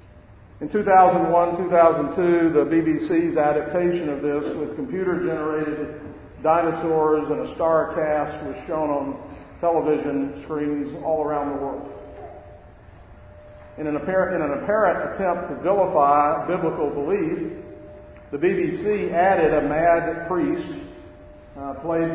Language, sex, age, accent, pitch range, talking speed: English, male, 50-69, American, 145-170 Hz, 105 wpm